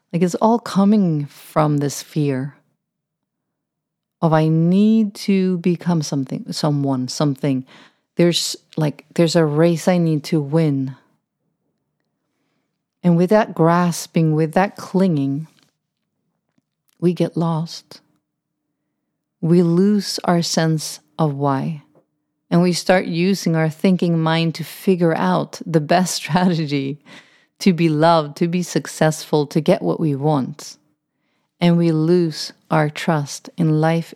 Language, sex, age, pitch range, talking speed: English, female, 40-59, 150-175 Hz, 125 wpm